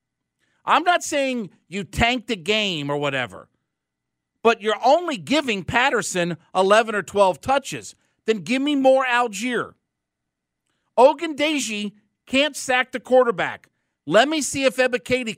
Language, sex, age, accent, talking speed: English, male, 50-69, American, 130 wpm